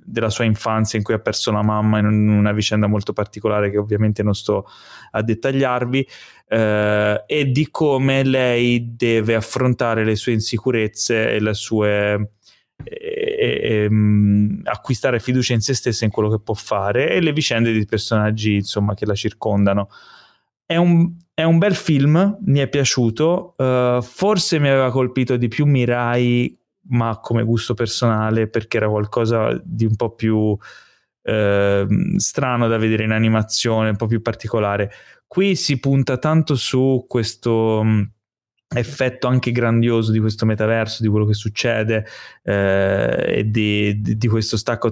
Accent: native